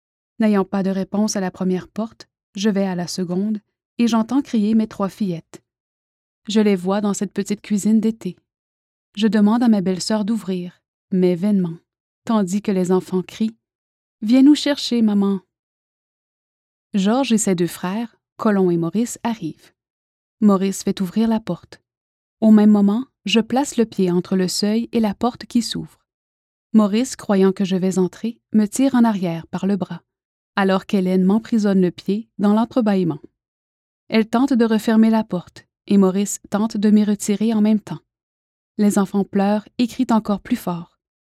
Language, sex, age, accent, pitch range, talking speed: French, female, 30-49, Canadian, 185-225 Hz, 170 wpm